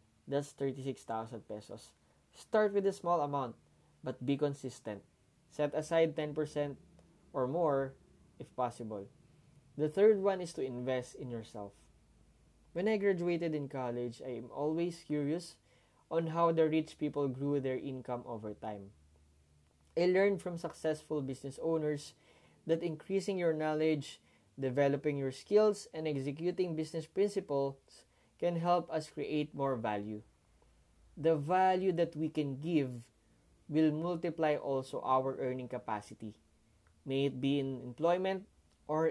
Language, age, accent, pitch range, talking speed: English, 20-39, Filipino, 120-160 Hz, 130 wpm